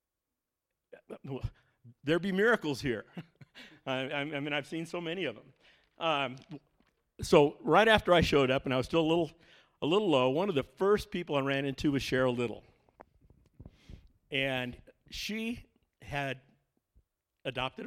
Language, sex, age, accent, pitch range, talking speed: English, male, 50-69, American, 120-145 Hz, 145 wpm